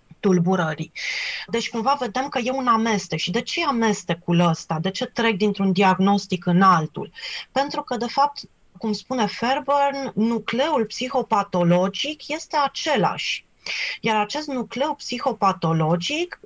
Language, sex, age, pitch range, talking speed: Romanian, female, 30-49, 205-270 Hz, 130 wpm